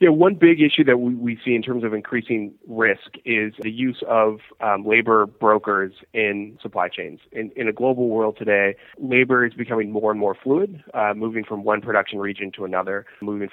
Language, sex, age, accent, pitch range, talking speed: English, male, 20-39, American, 100-115 Hz, 195 wpm